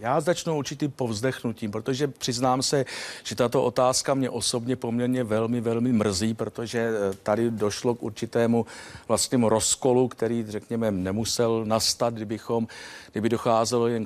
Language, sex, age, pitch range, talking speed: Czech, male, 50-69, 115-135 Hz, 130 wpm